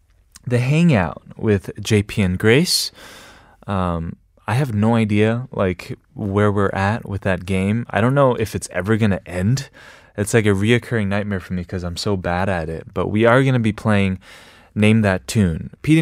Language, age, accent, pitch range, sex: Korean, 20-39, American, 90-125 Hz, male